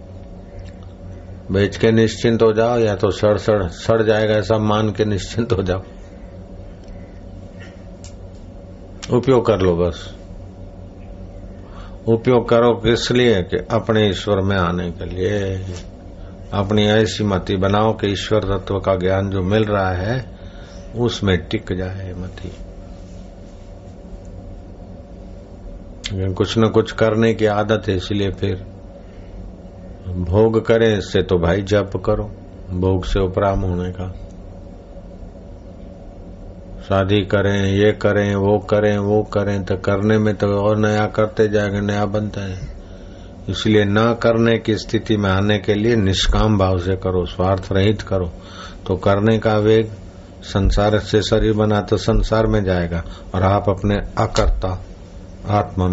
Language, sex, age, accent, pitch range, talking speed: Hindi, male, 60-79, native, 95-105 Hz, 125 wpm